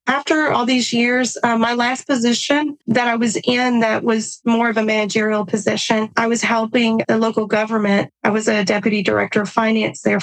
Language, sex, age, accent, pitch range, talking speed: English, female, 30-49, American, 215-240 Hz, 195 wpm